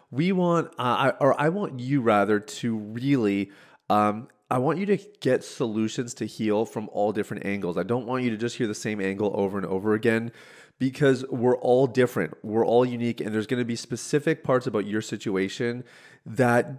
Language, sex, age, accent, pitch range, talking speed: English, male, 30-49, American, 100-125 Hz, 200 wpm